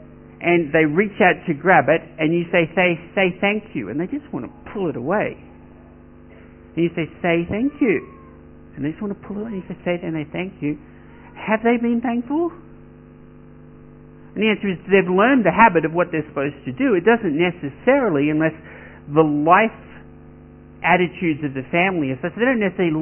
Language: English